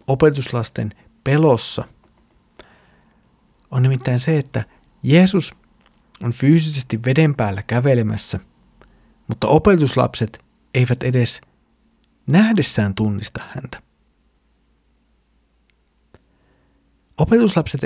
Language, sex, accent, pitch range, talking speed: Finnish, male, native, 105-135 Hz, 65 wpm